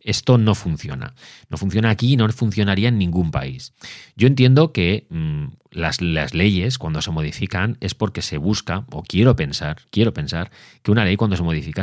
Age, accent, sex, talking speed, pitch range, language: 30-49, Spanish, male, 190 wpm, 85-105 Hz, Spanish